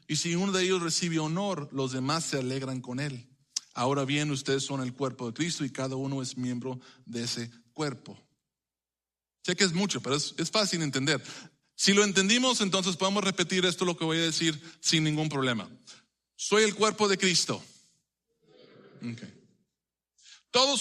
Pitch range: 130-190 Hz